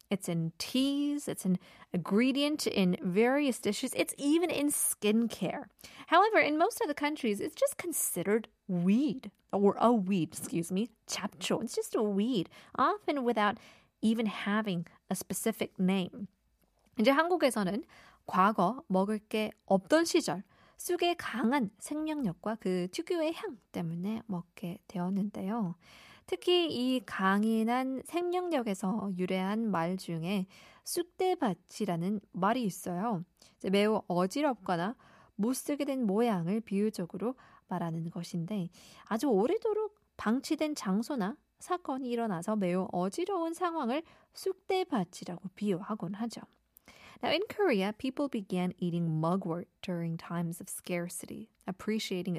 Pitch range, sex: 185-275 Hz, female